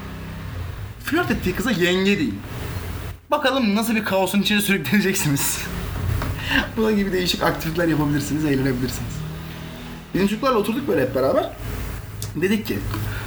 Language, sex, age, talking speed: Turkish, male, 30-49, 115 wpm